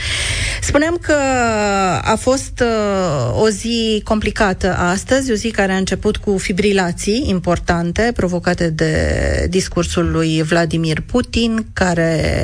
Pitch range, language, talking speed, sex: 155-205 Hz, Romanian, 115 wpm, female